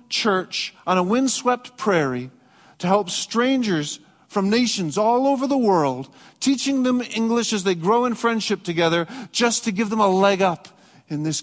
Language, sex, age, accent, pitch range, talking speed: English, male, 40-59, American, 185-230 Hz, 170 wpm